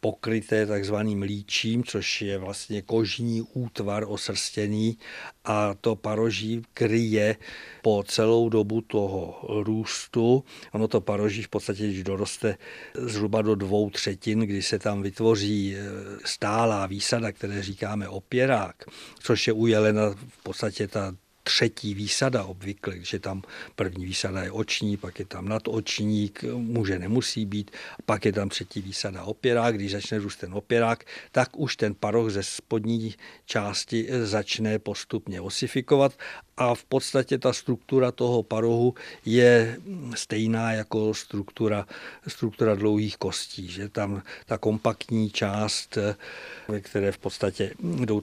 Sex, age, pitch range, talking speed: male, 50-69, 100-115 Hz, 130 wpm